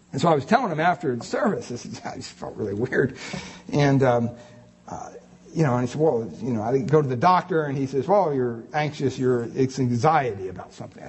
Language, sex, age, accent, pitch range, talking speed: English, male, 50-69, American, 125-190 Hz, 235 wpm